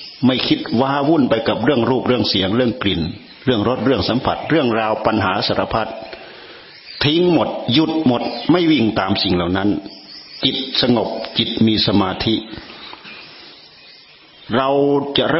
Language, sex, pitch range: Thai, male, 100-125 Hz